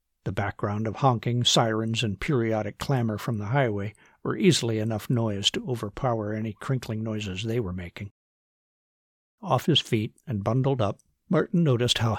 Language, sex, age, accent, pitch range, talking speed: English, male, 60-79, American, 105-135 Hz, 160 wpm